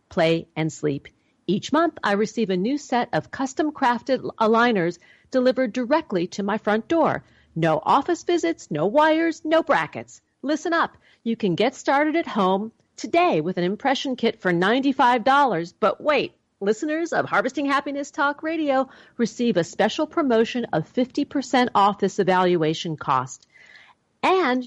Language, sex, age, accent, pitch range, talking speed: English, female, 50-69, American, 180-280 Hz, 150 wpm